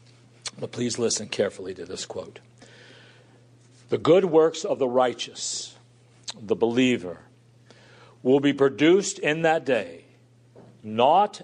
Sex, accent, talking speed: male, American, 115 wpm